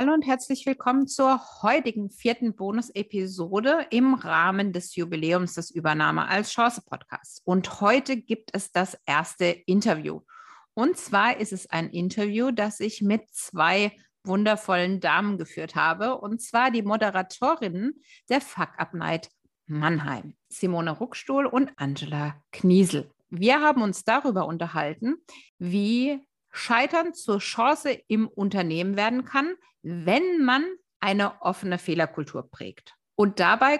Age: 50-69